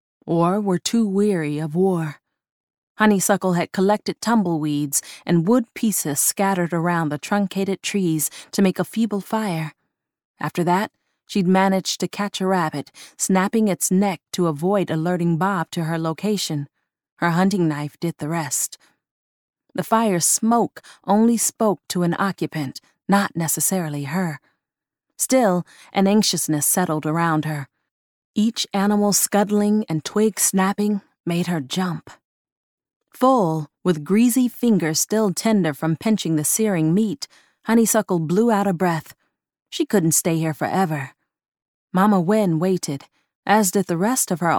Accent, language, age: American, English, 30-49